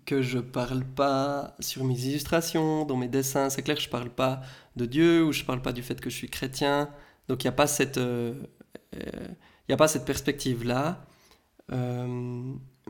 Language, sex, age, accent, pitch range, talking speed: English, male, 20-39, French, 130-145 Hz, 200 wpm